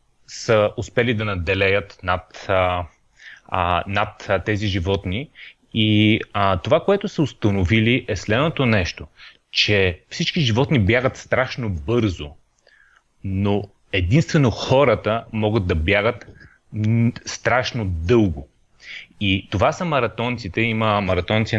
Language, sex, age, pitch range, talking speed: Bulgarian, male, 30-49, 95-120 Hz, 110 wpm